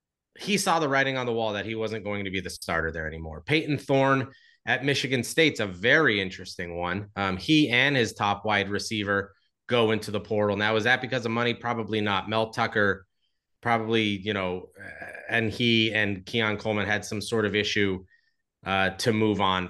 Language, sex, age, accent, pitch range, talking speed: English, male, 30-49, American, 100-130 Hz, 195 wpm